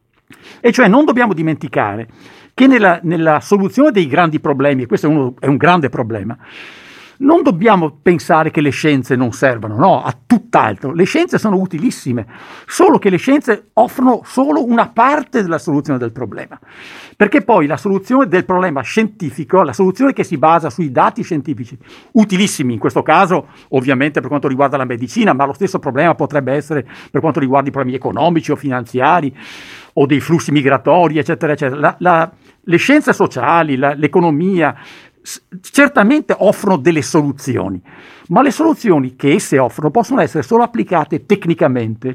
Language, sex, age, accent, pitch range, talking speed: Italian, male, 50-69, native, 145-220 Hz, 160 wpm